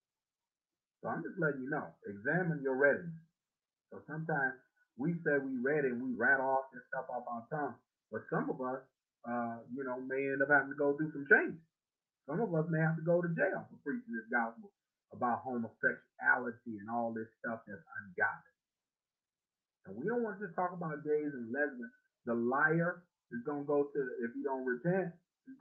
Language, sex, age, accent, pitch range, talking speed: English, male, 30-49, American, 150-205 Hz, 195 wpm